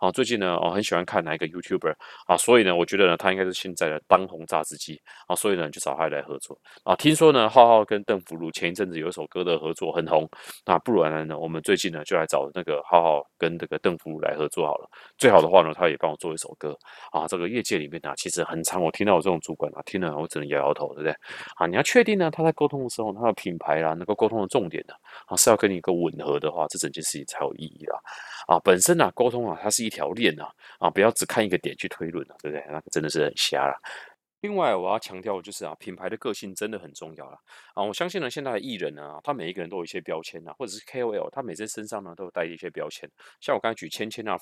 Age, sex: 30-49, male